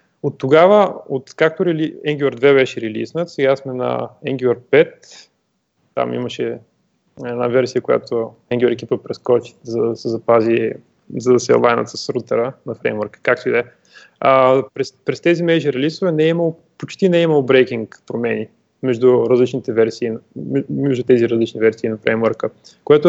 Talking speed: 155 wpm